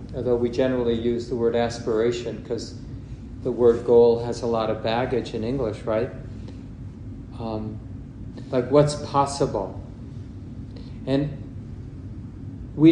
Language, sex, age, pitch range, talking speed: English, male, 40-59, 115-130 Hz, 115 wpm